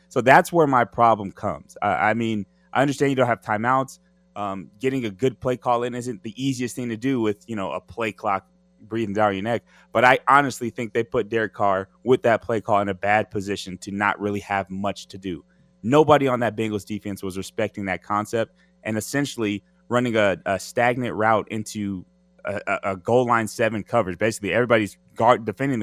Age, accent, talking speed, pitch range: 20-39, American, 200 wpm, 100-120 Hz